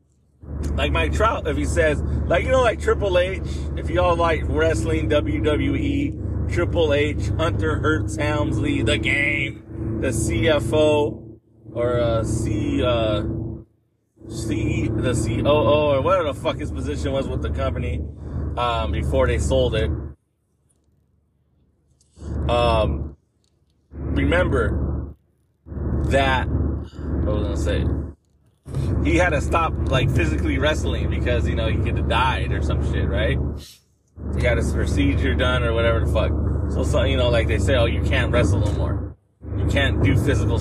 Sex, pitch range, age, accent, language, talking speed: male, 75-110 Hz, 30-49, American, English, 150 wpm